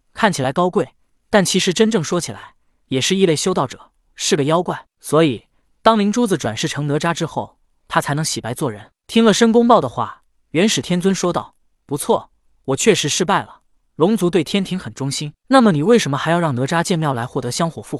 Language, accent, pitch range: Chinese, native, 140-190 Hz